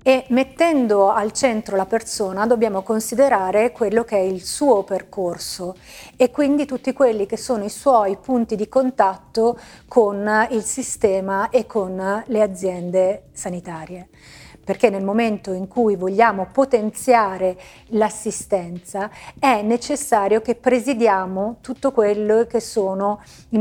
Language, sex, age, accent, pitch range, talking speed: Italian, female, 30-49, native, 195-235 Hz, 125 wpm